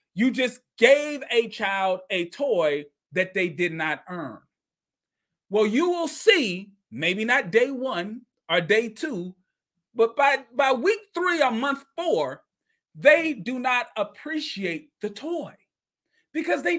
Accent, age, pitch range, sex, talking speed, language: American, 40-59, 195-295 Hz, male, 140 wpm, English